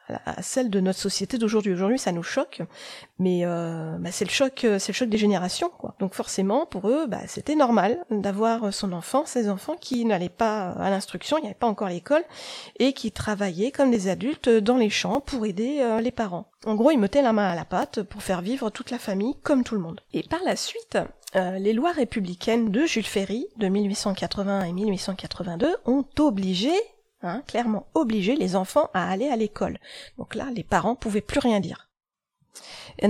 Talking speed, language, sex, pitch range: 205 wpm, French, female, 195-250 Hz